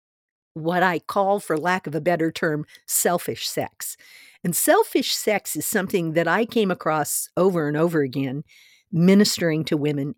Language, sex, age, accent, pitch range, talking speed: English, female, 50-69, American, 160-215 Hz, 160 wpm